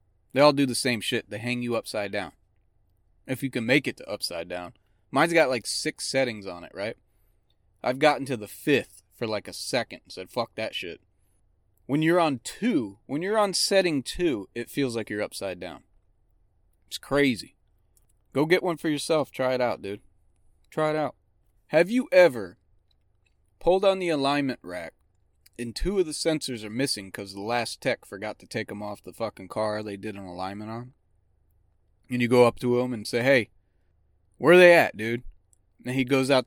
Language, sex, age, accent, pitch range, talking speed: English, male, 30-49, American, 95-130 Hz, 195 wpm